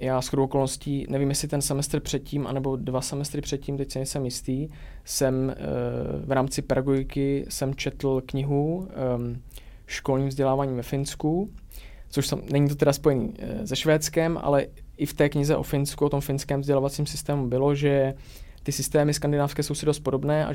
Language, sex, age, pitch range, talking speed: Czech, male, 20-39, 130-145 Hz, 170 wpm